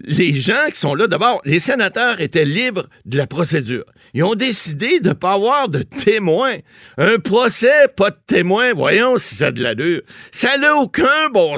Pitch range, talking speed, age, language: 160-235 Hz, 195 wpm, 60-79, French